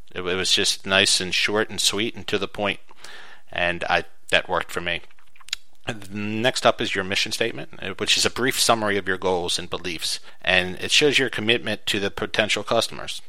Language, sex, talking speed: English, male, 195 wpm